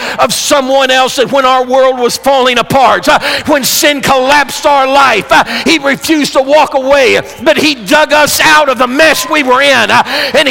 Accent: American